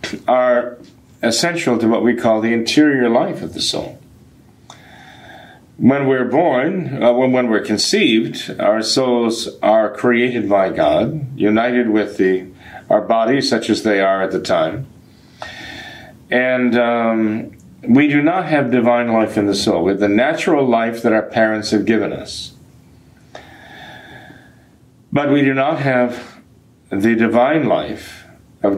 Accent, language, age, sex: American, English, 50-69, male